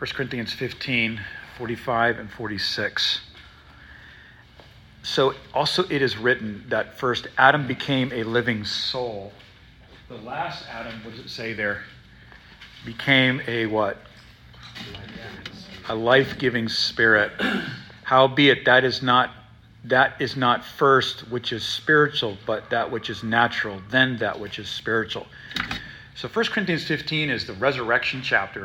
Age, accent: 40-59, American